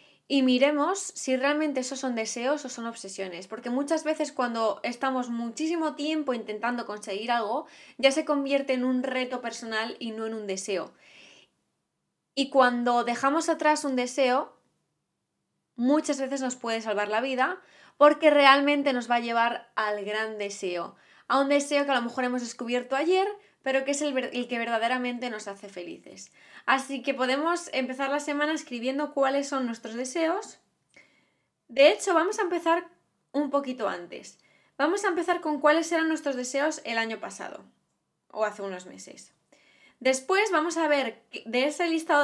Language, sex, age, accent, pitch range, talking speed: Spanish, female, 20-39, Spanish, 235-300 Hz, 165 wpm